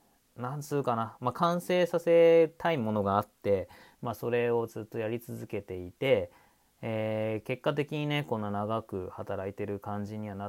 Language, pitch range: Japanese, 100-130 Hz